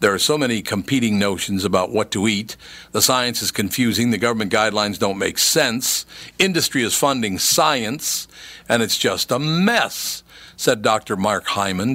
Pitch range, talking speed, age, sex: 100-125 Hz, 165 wpm, 50-69, male